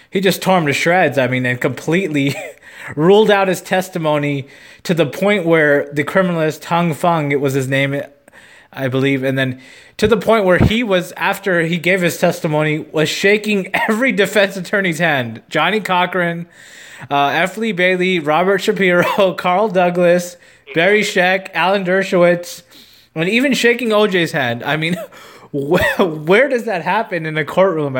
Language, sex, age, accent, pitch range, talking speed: English, male, 20-39, American, 160-210 Hz, 165 wpm